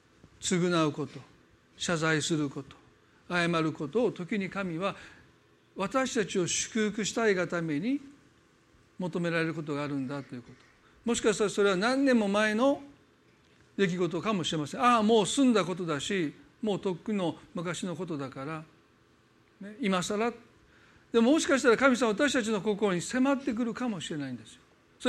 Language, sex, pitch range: Japanese, male, 150-215 Hz